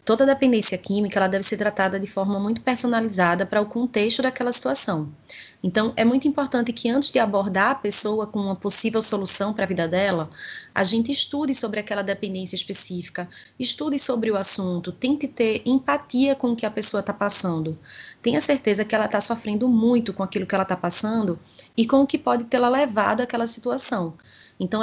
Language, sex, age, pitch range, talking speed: Portuguese, female, 20-39, 200-245 Hz, 185 wpm